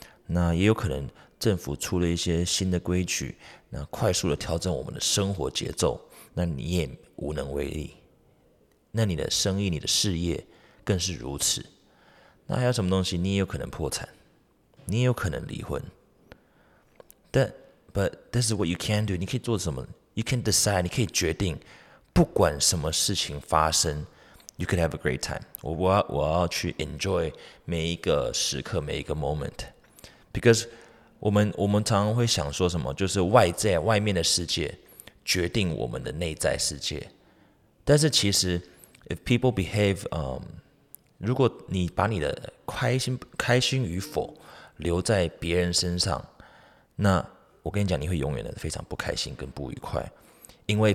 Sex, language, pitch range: male, Chinese, 85-105 Hz